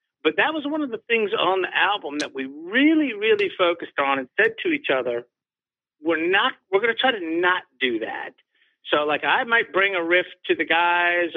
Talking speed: 215 wpm